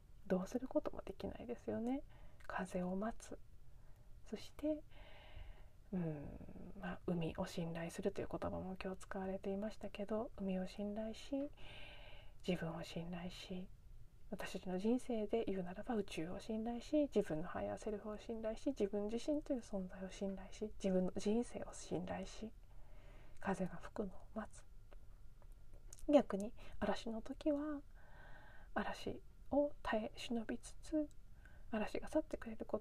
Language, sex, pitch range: Japanese, female, 190-250 Hz